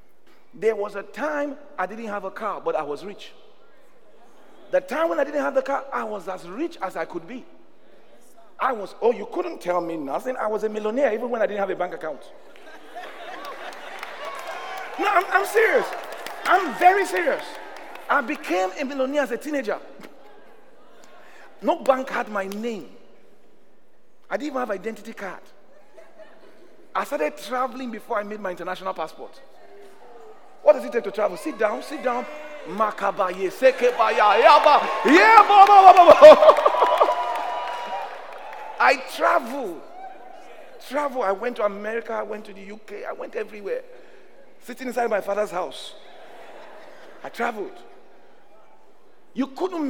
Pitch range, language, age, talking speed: 205-295 Hz, English, 40-59, 140 wpm